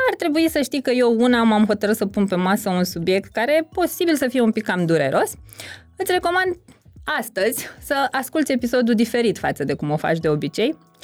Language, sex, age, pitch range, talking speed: Romanian, female, 20-39, 205-305 Hz, 205 wpm